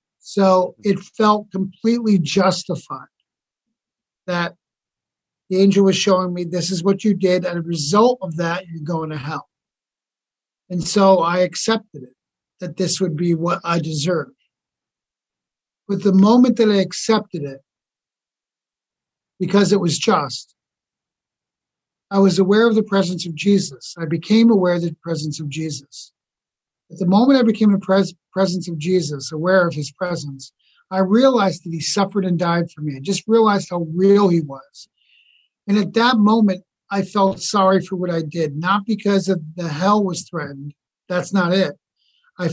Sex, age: male, 50-69